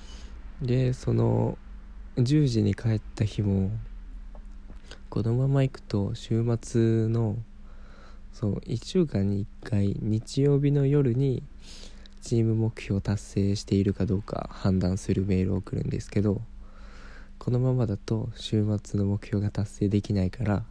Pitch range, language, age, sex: 95-115 Hz, Japanese, 20-39, male